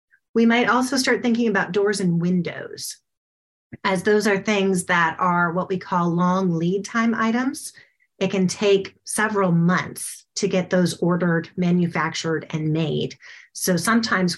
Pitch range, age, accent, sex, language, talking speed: 175-220 Hz, 30-49, American, female, English, 150 wpm